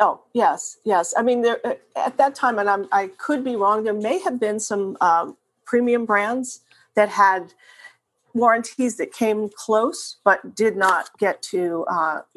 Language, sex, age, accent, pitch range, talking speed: English, female, 40-59, American, 190-235 Hz, 170 wpm